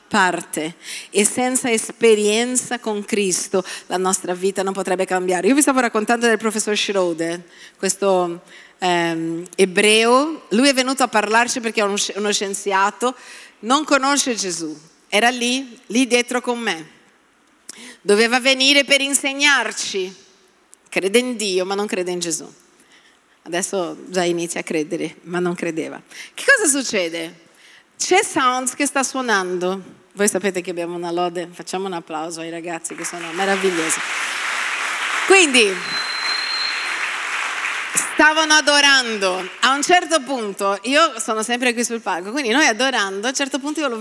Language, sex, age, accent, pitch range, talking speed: Italian, female, 40-59, native, 185-250 Hz, 140 wpm